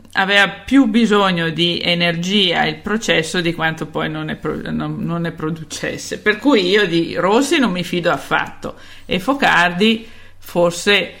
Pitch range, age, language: 160-200 Hz, 50-69, Italian